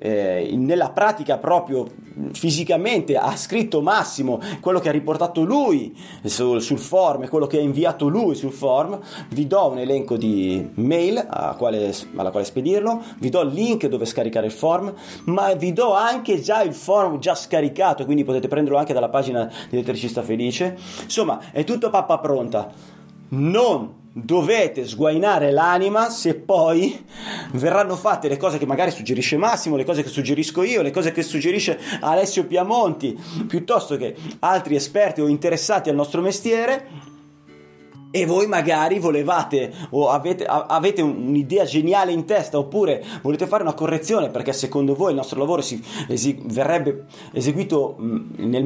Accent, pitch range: native, 130-185 Hz